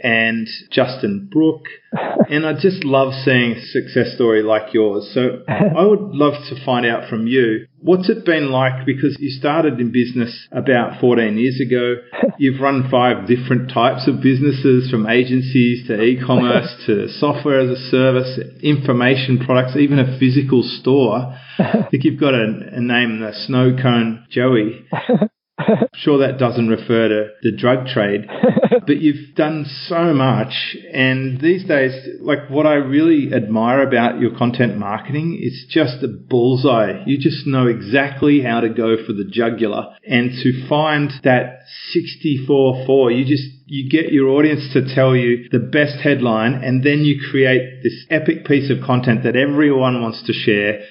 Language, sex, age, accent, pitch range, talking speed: English, male, 40-59, Australian, 120-145 Hz, 165 wpm